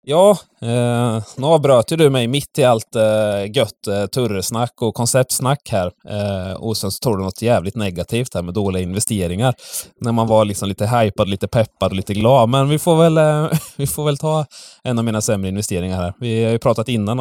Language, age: English, 20-39